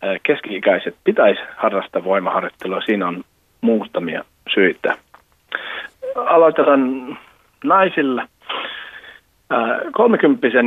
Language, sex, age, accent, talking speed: Finnish, male, 40-59, native, 60 wpm